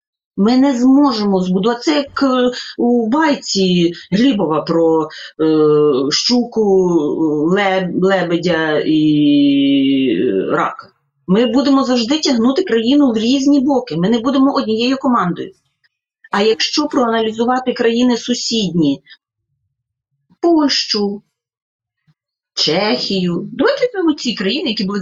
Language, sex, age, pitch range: Ukrainian, female, 30-49, 160-235 Hz